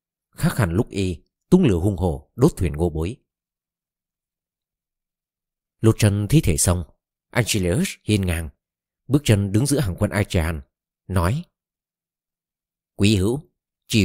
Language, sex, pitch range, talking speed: Vietnamese, male, 90-120 Hz, 130 wpm